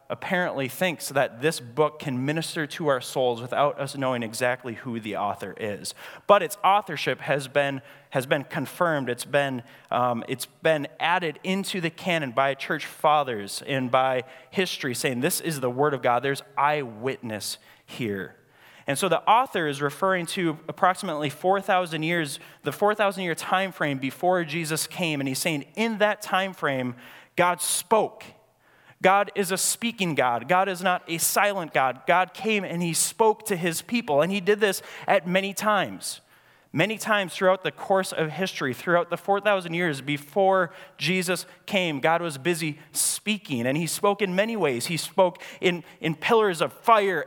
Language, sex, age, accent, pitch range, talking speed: English, male, 20-39, American, 145-190 Hz, 170 wpm